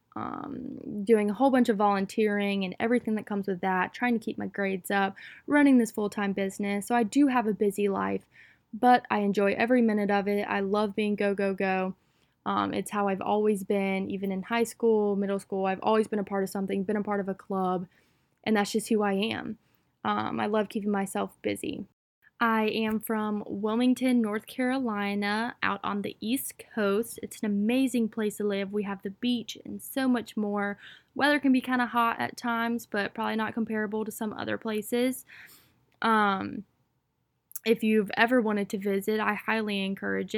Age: 10-29